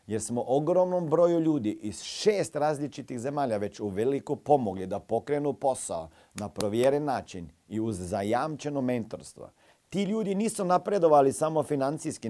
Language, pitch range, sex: Croatian, 115-155 Hz, male